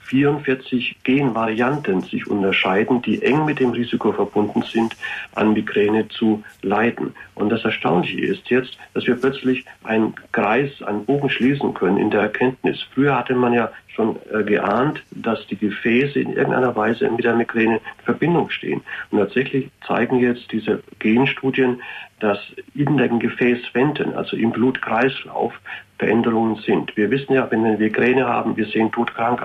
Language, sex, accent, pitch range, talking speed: German, male, German, 110-130 Hz, 155 wpm